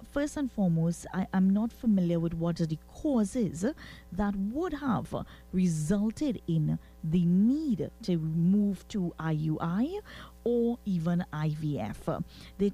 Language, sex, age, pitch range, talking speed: English, female, 30-49, 170-230 Hz, 125 wpm